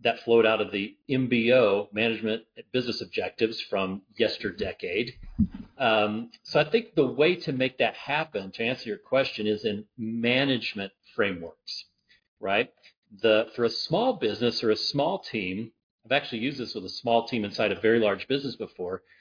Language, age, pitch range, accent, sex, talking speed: English, 40-59, 110-150 Hz, American, male, 165 wpm